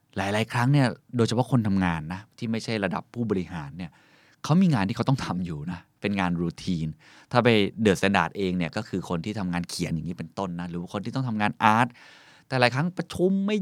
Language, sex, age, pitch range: Thai, male, 20-39, 95-130 Hz